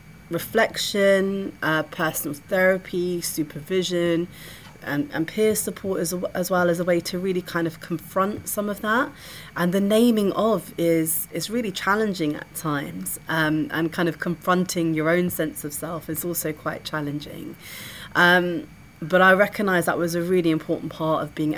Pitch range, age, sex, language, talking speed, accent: 150-175 Hz, 30-49, female, English, 165 wpm, British